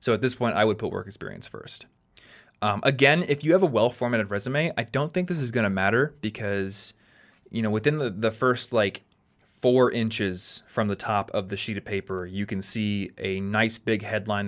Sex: male